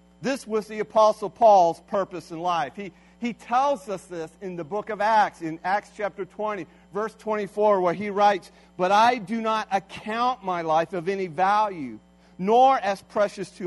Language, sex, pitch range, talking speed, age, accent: English, male, 150-215 Hz, 180 wpm, 50-69, American